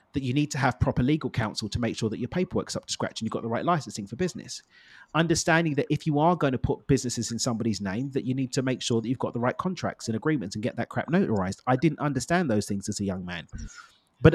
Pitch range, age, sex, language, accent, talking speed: 115-150 Hz, 30-49, male, English, British, 275 wpm